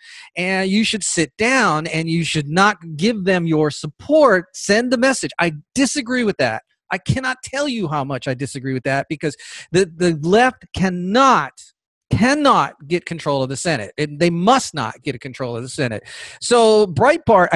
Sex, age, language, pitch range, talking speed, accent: male, 40-59, English, 150-220 Hz, 180 wpm, American